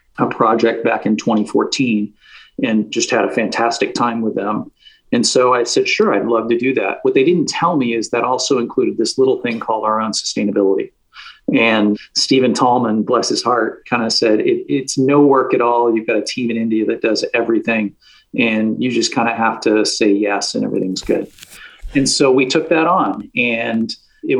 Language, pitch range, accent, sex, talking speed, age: English, 110-125 Hz, American, male, 200 wpm, 40-59